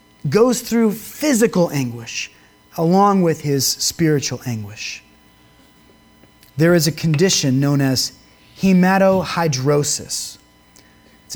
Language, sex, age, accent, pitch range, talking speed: English, male, 30-49, American, 145-200 Hz, 90 wpm